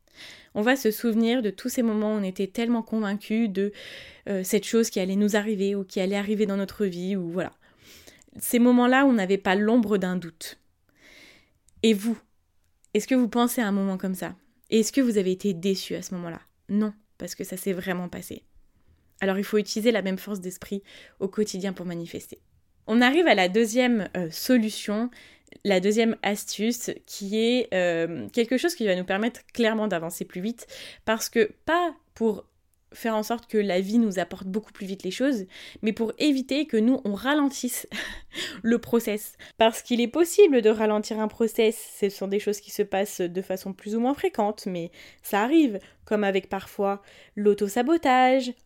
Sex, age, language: female, 20-39, French